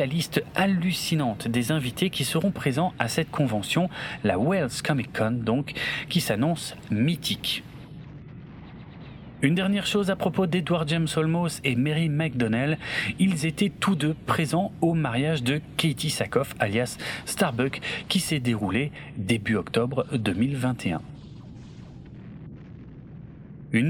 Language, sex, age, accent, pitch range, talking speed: French, male, 40-59, French, 125-170 Hz, 125 wpm